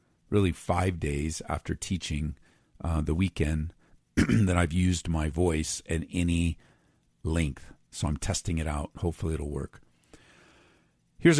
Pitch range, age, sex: 85-110 Hz, 50-69, male